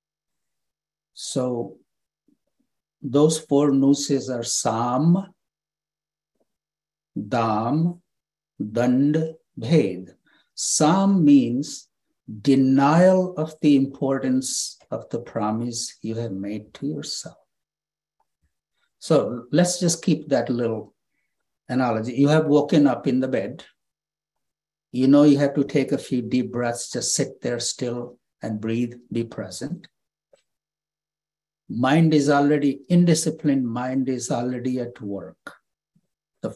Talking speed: 105 wpm